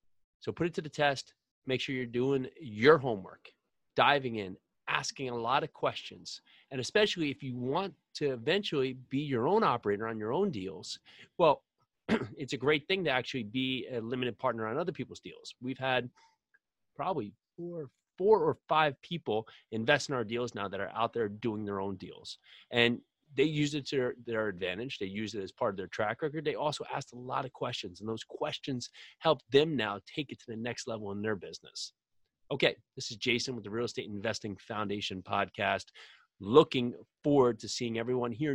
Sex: male